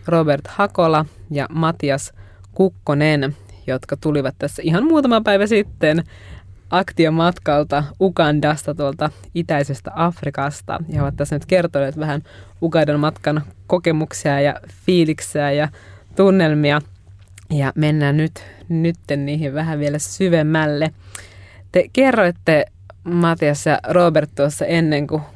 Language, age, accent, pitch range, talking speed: Finnish, 20-39, native, 140-165 Hz, 110 wpm